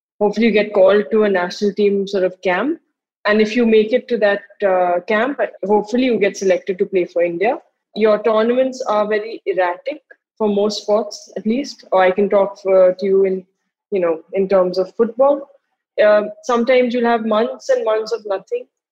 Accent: Indian